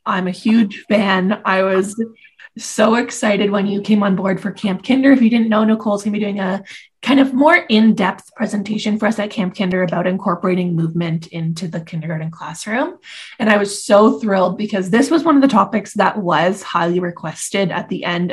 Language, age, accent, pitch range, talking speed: English, 20-39, American, 180-220 Hz, 205 wpm